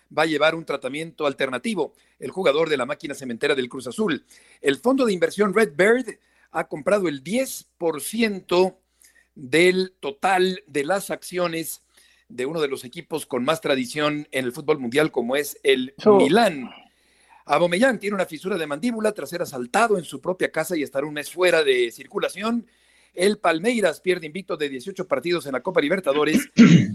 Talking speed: 170 wpm